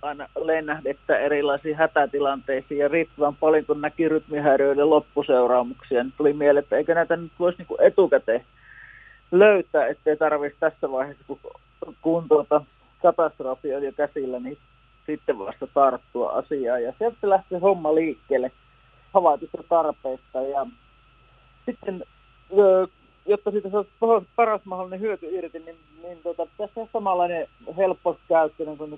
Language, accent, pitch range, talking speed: Finnish, native, 140-170 Hz, 120 wpm